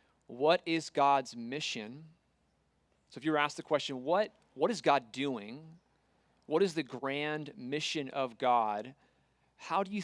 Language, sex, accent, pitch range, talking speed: English, male, American, 135-165 Hz, 155 wpm